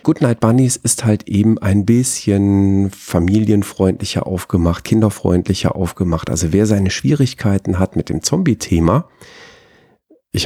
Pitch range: 90-110 Hz